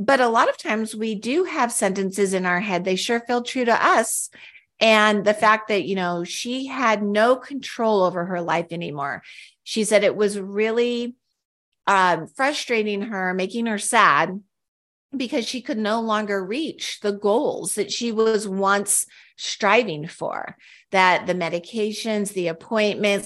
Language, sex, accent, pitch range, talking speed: English, female, American, 185-230 Hz, 160 wpm